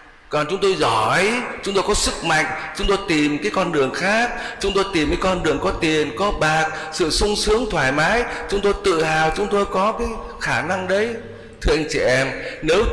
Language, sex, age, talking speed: Vietnamese, male, 60-79, 220 wpm